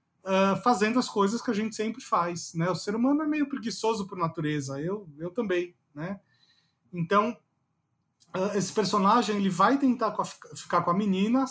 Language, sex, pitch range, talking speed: Portuguese, male, 165-205 Hz, 170 wpm